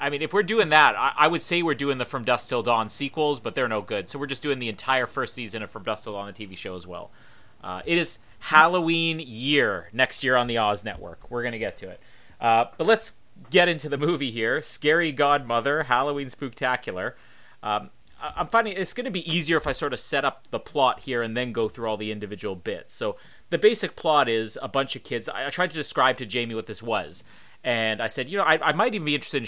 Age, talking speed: 30-49, 250 wpm